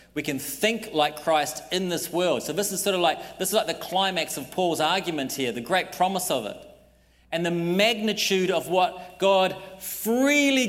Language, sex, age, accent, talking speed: English, male, 40-59, Australian, 195 wpm